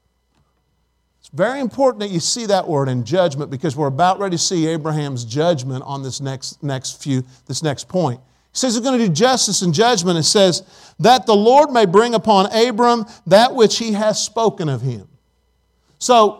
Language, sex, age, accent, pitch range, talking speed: English, male, 50-69, American, 125-215 Hz, 185 wpm